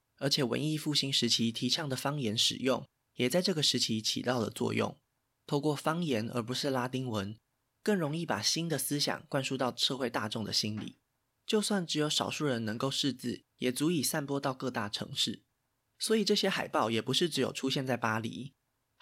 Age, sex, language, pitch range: 20-39, male, Chinese, 120-150 Hz